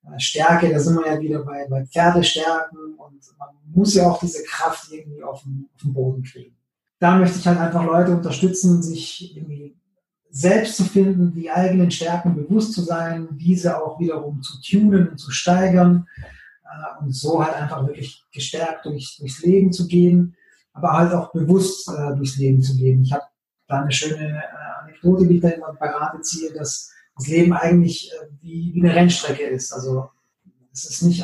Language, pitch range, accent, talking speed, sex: German, 150-185 Hz, German, 175 wpm, male